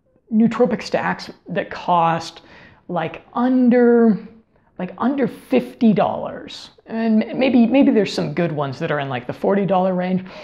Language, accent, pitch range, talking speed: English, American, 175-225 Hz, 145 wpm